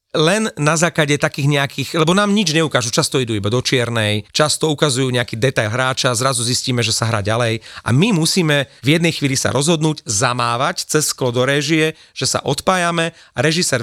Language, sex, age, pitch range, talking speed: Slovak, male, 40-59, 125-160 Hz, 185 wpm